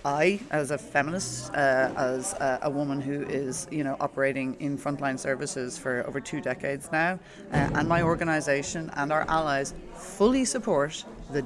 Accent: Irish